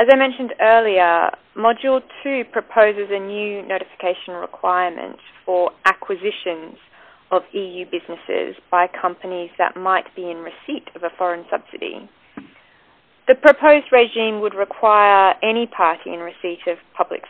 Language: English